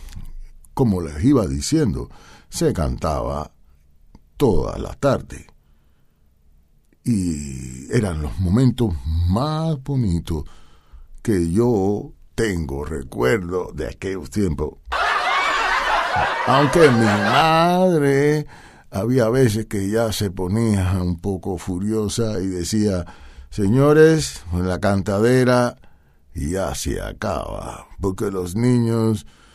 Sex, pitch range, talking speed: male, 80-120 Hz, 90 wpm